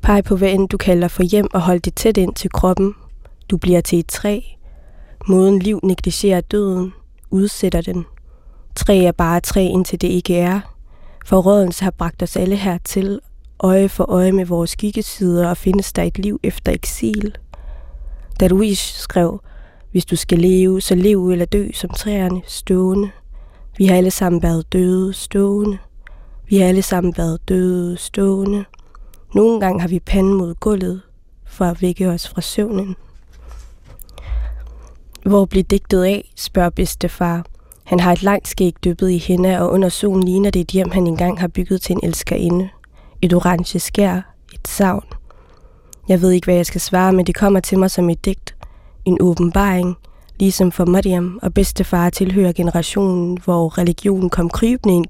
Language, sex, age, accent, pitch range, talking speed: Danish, female, 20-39, native, 175-195 Hz, 170 wpm